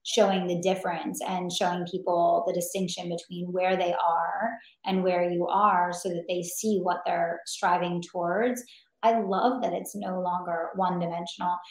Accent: American